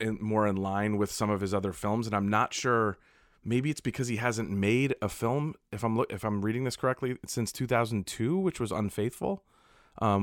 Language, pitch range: English, 95-115 Hz